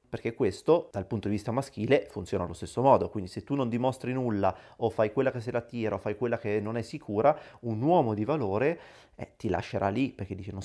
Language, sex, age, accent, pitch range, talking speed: Italian, male, 30-49, native, 100-130 Hz, 235 wpm